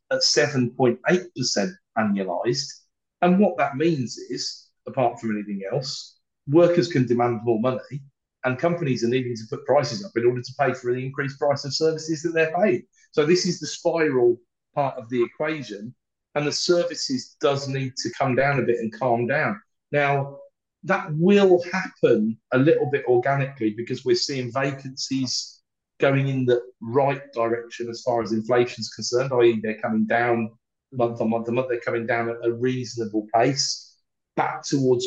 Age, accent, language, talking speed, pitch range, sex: 40-59, British, English, 175 wpm, 120-165 Hz, male